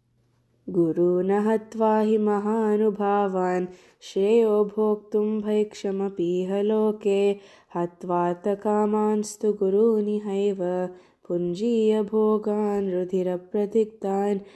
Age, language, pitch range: 20-39, Hindi, 185-215 Hz